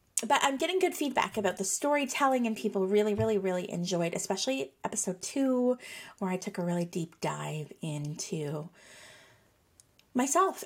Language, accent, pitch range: English, American, 175-220 Hz